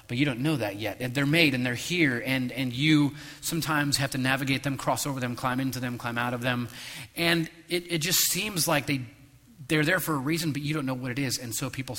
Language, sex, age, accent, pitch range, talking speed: English, male, 30-49, American, 115-140 Hz, 255 wpm